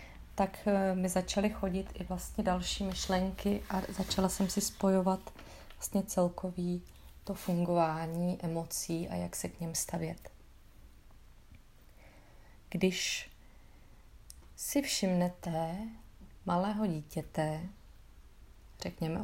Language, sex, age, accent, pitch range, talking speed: Czech, female, 30-49, native, 165-200 Hz, 85 wpm